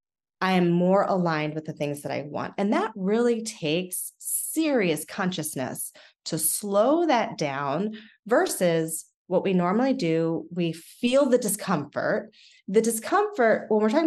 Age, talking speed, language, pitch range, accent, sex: 30-49, 145 wpm, English, 175-240 Hz, American, female